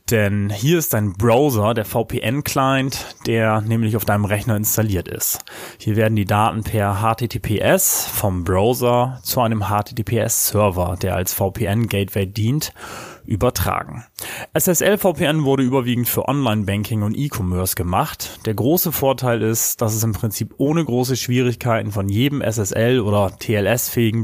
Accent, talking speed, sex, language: German, 135 wpm, male, German